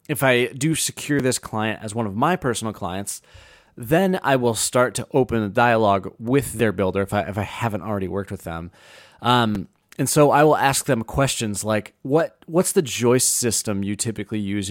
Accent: American